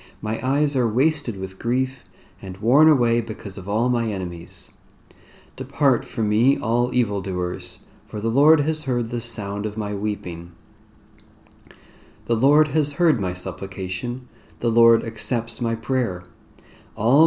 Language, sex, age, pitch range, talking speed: English, male, 40-59, 100-130 Hz, 145 wpm